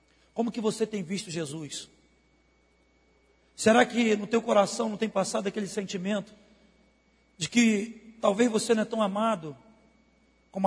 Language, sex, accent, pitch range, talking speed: Portuguese, male, Brazilian, 195-290 Hz, 140 wpm